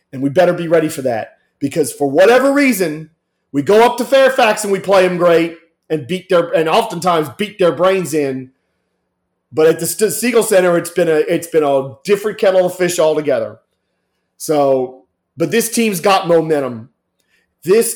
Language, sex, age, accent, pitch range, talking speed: English, male, 40-59, American, 145-180 Hz, 175 wpm